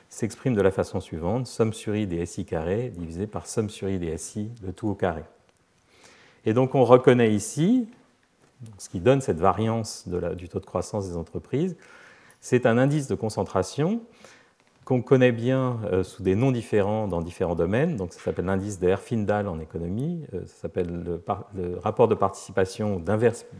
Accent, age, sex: French, 40-59, male